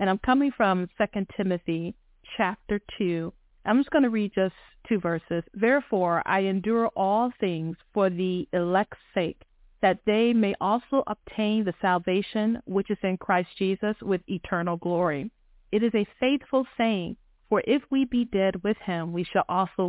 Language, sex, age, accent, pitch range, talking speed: English, female, 40-59, American, 175-215 Hz, 165 wpm